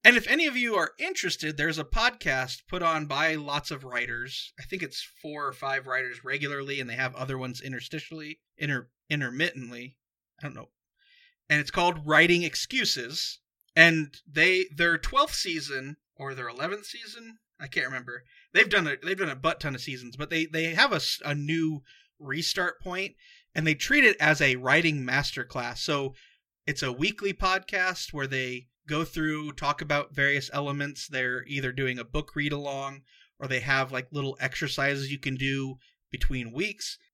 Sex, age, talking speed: male, 30-49, 180 wpm